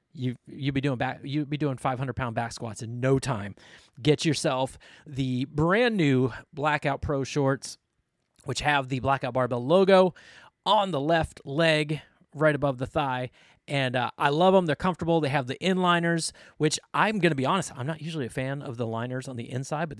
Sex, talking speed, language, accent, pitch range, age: male, 195 wpm, English, American, 130-165 Hz, 30-49